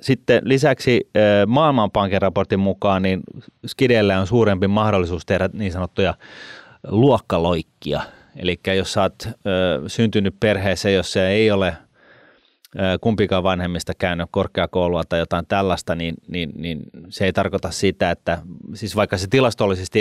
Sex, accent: male, native